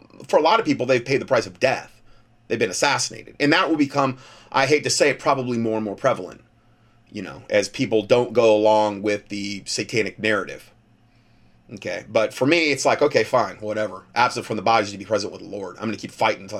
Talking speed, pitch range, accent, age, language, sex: 230 wpm, 110-125 Hz, American, 30-49, English, male